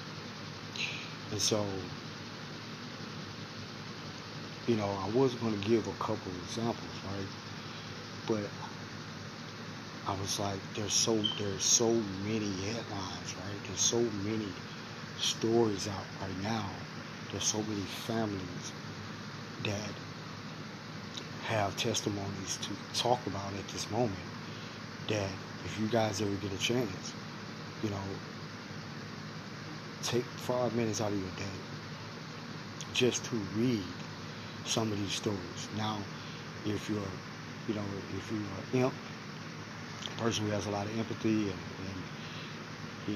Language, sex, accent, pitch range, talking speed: English, male, American, 100-115 Hz, 120 wpm